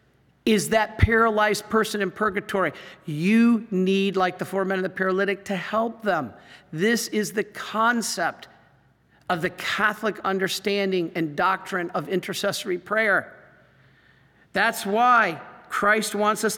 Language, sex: English, male